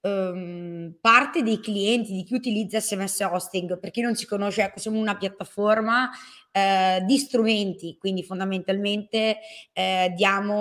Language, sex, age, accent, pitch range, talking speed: Italian, female, 20-39, native, 190-225 Hz, 130 wpm